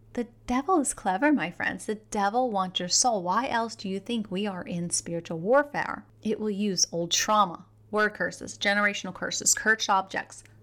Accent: American